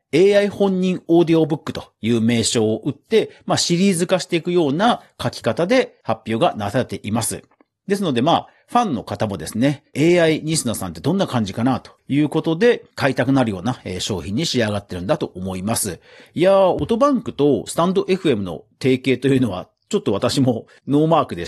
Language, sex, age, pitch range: Japanese, male, 40-59, 115-190 Hz